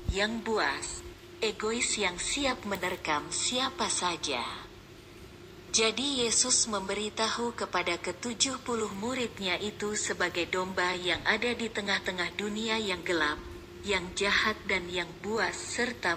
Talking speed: 110 wpm